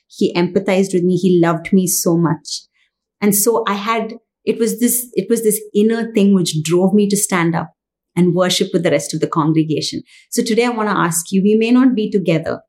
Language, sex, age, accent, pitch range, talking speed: English, female, 30-49, Indian, 175-215 Hz, 220 wpm